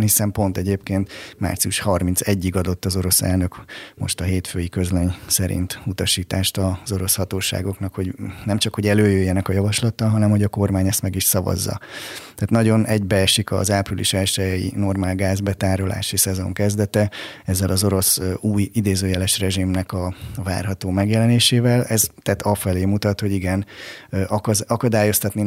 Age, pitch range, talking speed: 30-49, 95-105 Hz, 140 wpm